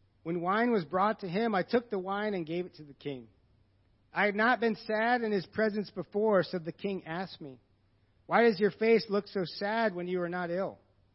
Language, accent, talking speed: English, American, 225 wpm